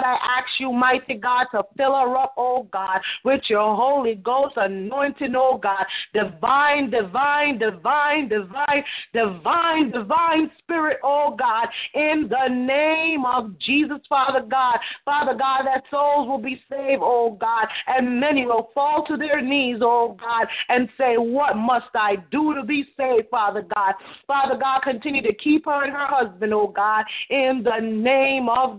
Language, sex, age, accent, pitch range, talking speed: English, female, 30-49, American, 220-275 Hz, 165 wpm